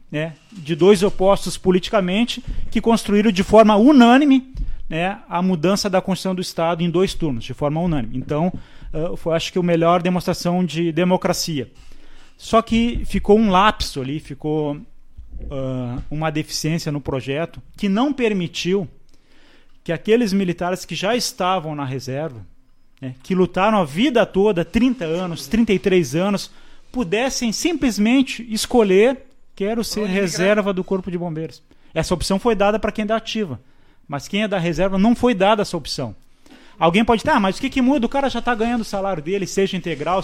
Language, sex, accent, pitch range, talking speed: Portuguese, male, Brazilian, 155-210 Hz, 165 wpm